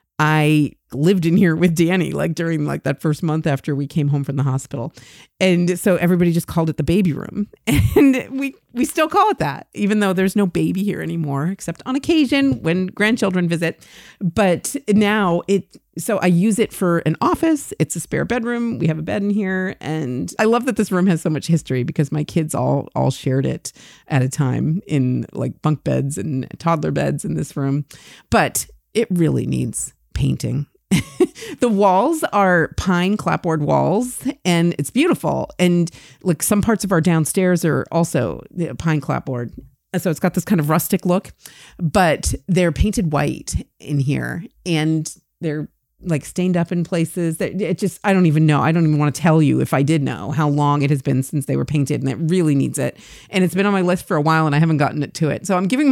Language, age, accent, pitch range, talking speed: English, 40-59, American, 150-200 Hz, 210 wpm